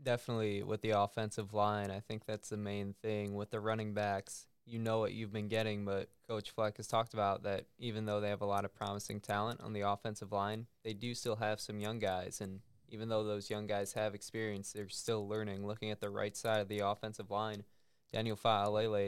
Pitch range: 100-110 Hz